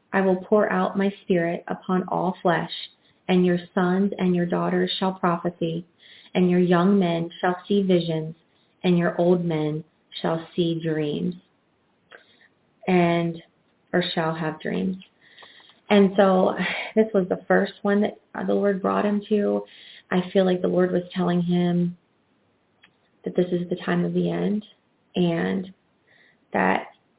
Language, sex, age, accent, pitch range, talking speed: English, female, 30-49, American, 175-200 Hz, 150 wpm